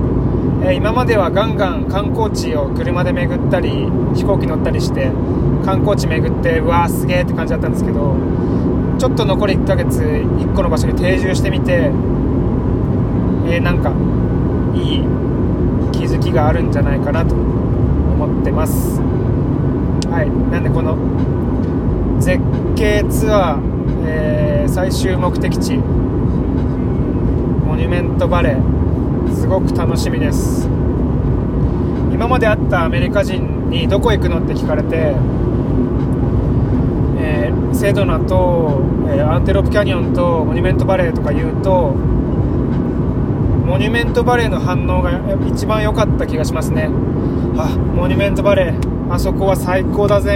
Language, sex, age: Japanese, male, 20-39